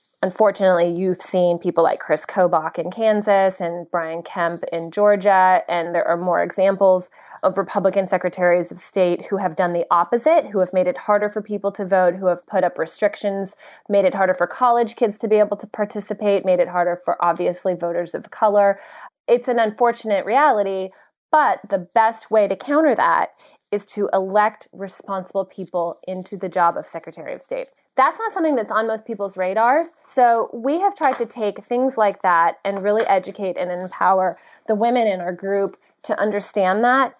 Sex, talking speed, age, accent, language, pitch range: female, 185 wpm, 20-39, American, English, 180-215 Hz